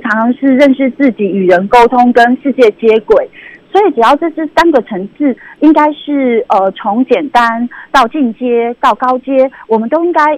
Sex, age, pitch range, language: female, 30-49, 225-300 Hz, Chinese